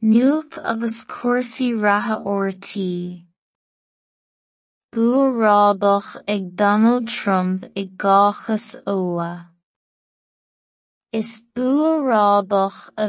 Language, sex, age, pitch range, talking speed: English, female, 20-39, 195-230 Hz, 85 wpm